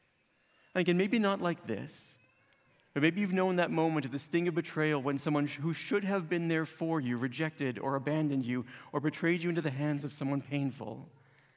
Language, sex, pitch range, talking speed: English, male, 135-165 Hz, 200 wpm